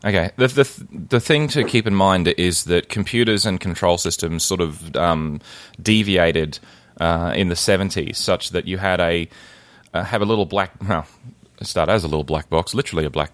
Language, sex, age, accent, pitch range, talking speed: English, male, 20-39, Australian, 80-100 Hz, 195 wpm